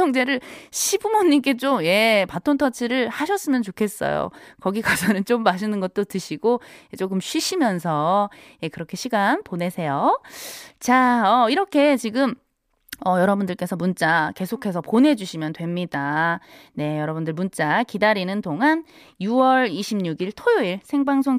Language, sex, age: Korean, female, 20-39